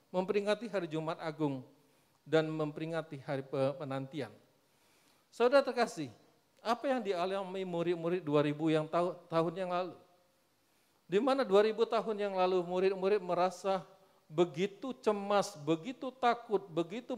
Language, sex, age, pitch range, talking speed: Indonesian, male, 40-59, 150-210 Hz, 110 wpm